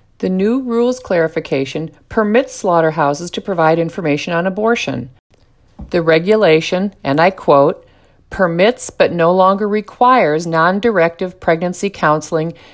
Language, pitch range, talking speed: English, 155-215 Hz, 115 wpm